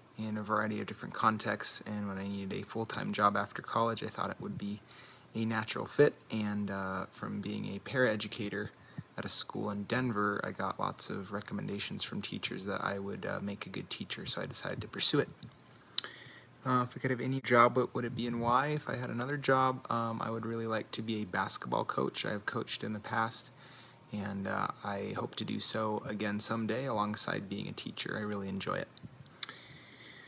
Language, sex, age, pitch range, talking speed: English, male, 30-49, 105-125 Hz, 210 wpm